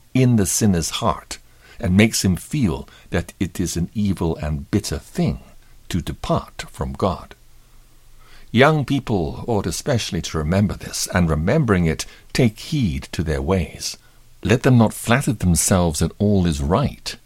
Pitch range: 80-115 Hz